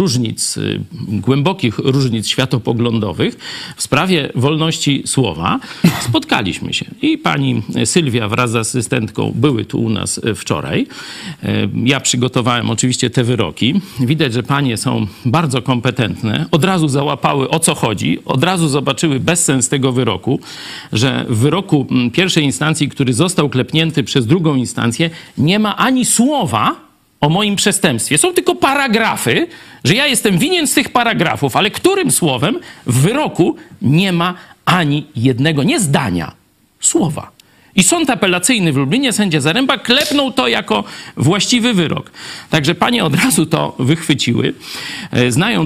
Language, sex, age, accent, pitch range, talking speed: Polish, male, 50-69, native, 125-175 Hz, 140 wpm